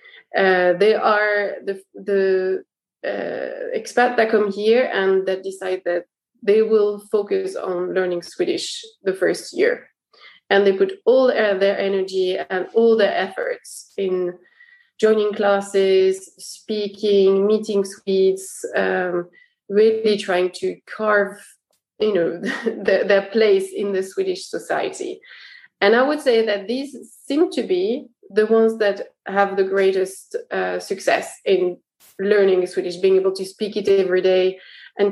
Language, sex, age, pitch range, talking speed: English, female, 20-39, 190-265 Hz, 135 wpm